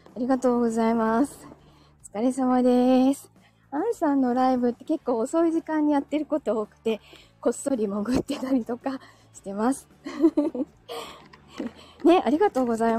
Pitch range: 215-295 Hz